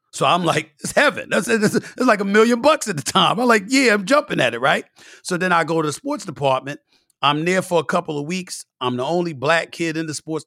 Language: English